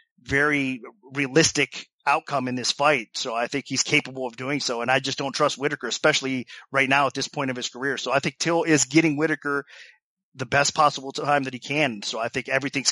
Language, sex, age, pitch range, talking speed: English, male, 30-49, 130-145 Hz, 220 wpm